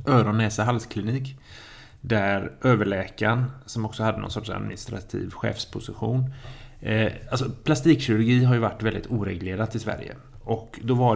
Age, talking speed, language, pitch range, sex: 30-49, 130 wpm, Swedish, 105-125 Hz, male